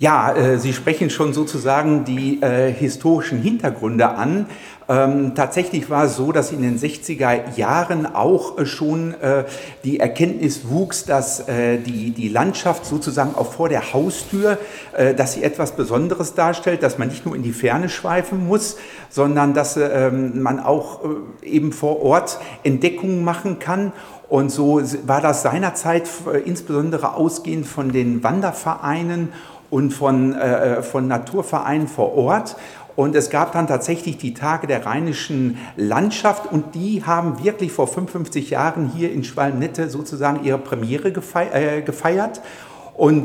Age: 50-69